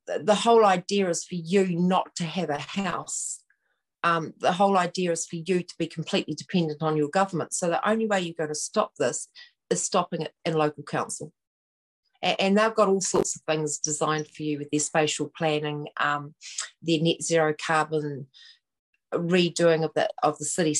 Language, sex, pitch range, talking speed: English, female, 155-190 Hz, 190 wpm